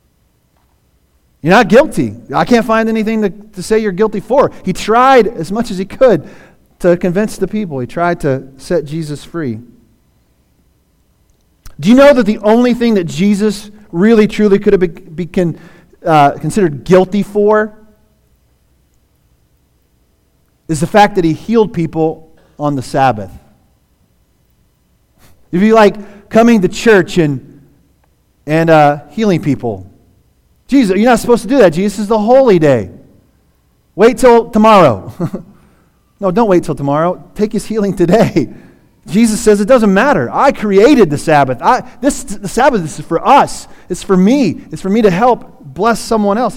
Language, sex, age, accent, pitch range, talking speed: English, male, 40-59, American, 140-215 Hz, 150 wpm